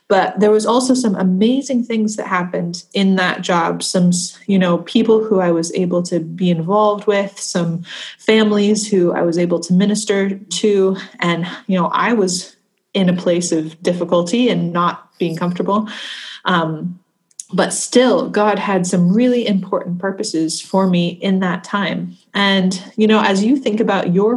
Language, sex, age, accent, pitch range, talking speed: English, female, 20-39, American, 175-210 Hz, 170 wpm